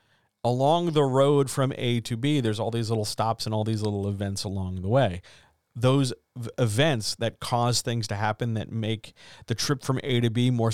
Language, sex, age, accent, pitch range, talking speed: English, male, 40-59, American, 105-130 Hz, 200 wpm